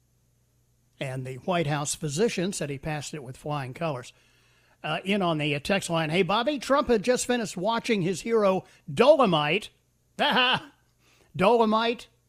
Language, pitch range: English, 150-235 Hz